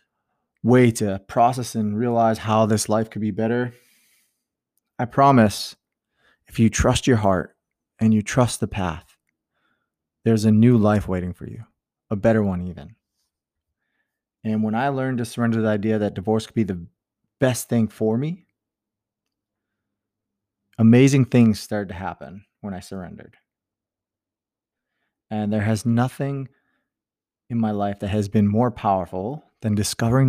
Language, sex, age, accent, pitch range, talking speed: English, male, 20-39, American, 100-115 Hz, 145 wpm